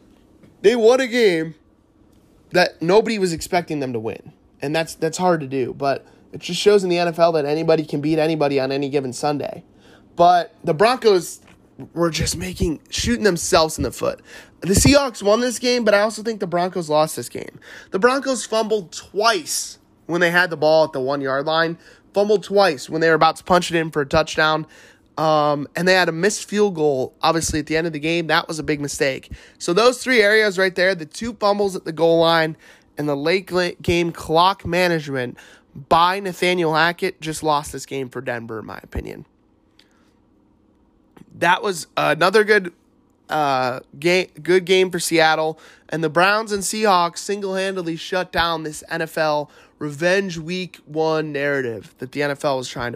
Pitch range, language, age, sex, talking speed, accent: 150-190 Hz, English, 20-39, male, 185 wpm, American